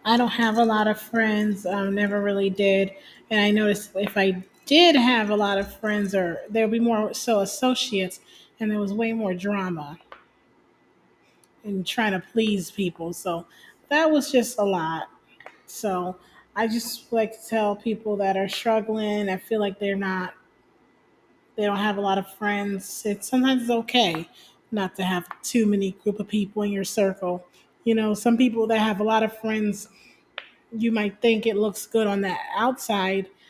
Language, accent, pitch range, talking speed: English, American, 195-220 Hz, 185 wpm